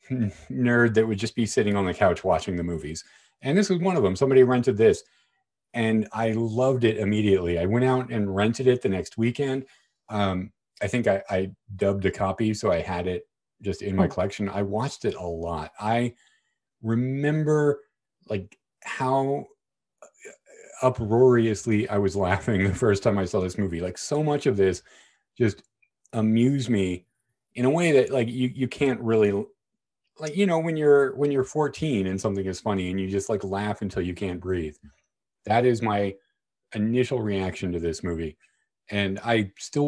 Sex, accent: male, American